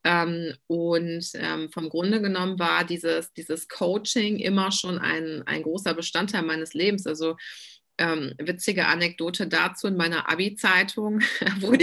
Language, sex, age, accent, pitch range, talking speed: German, female, 30-49, German, 165-195 Hz, 135 wpm